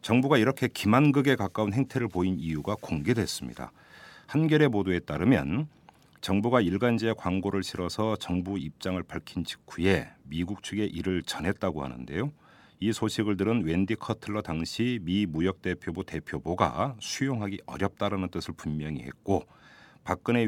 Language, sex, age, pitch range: Korean, male, 40-59, 80-115 Hz